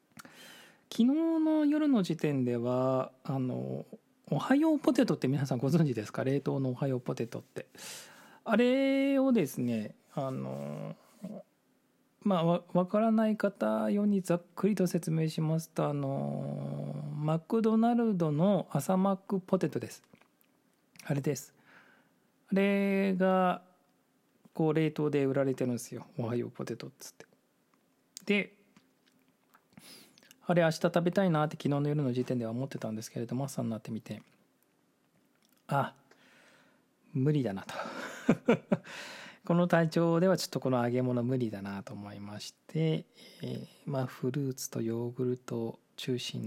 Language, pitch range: Japanese, 120-185 Hz